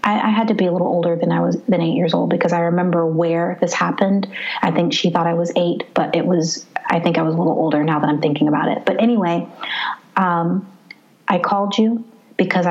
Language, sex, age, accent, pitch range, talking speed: English, female, 30-49, American, 175-205 Hz, 235 wpm